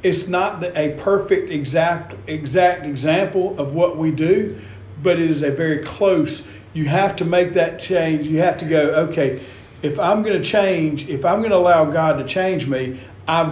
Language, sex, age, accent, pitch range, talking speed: English, male, 50-69, American, 140-180 Hz, 190 wpm